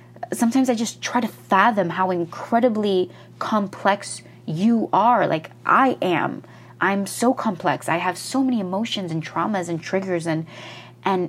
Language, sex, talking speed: English, female, 150 wpm